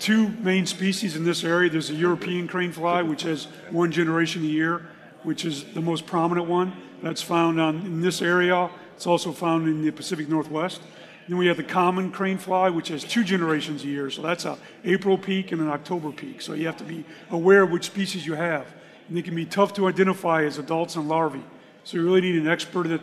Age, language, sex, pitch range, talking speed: 40-59, English, male, 165-185 Hz, 225 wpm